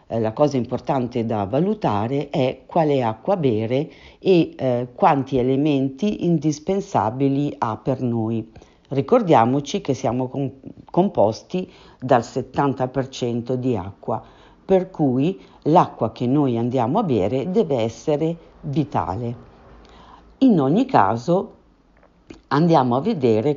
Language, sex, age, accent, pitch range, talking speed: Italian, female, 50-69, native, 120-160 Hz, 105 wpm